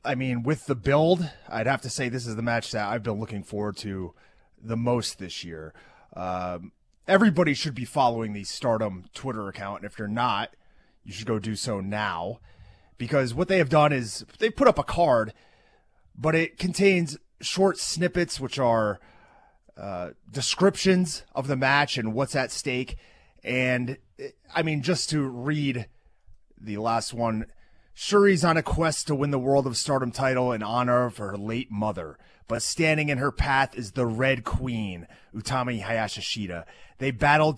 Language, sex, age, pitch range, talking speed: English, male, 30-49, 110-145 Hz, 170 wpm